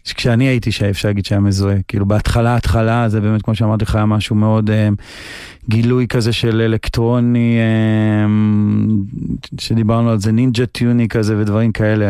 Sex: male